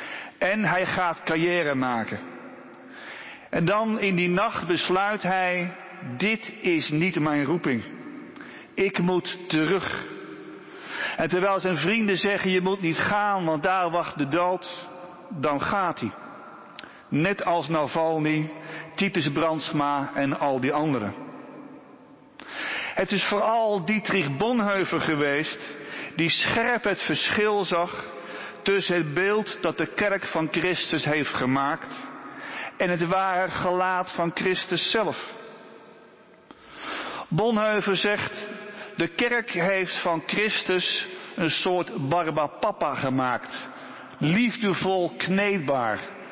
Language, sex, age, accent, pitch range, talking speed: Dutch, male, 50-69, Dutch, 160-205 Hz, 115 wpm